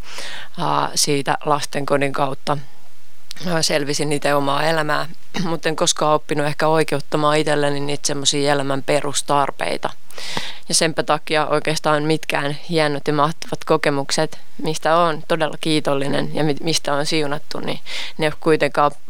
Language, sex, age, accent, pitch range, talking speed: Finnish, female, 20-39, native, 145-160 Hz, 125 wpm